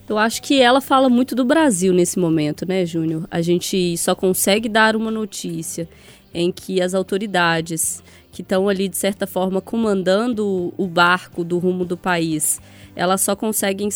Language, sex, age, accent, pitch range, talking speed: Portuguese, female, 20-39, Brazilian, 180-220 Hz, 170 wpm